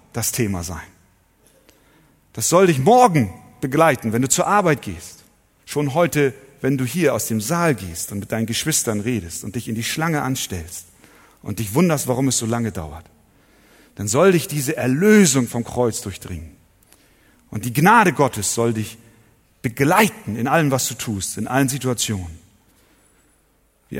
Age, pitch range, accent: 40-59, 110-145 Hz, German